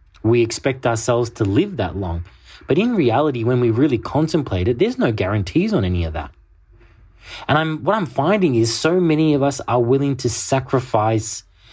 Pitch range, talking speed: 100-135 Hz, 185 wpm